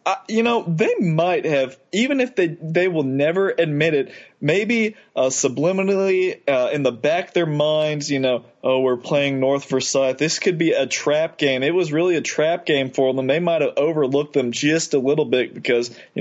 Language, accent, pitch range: English, American, 135-180 Hz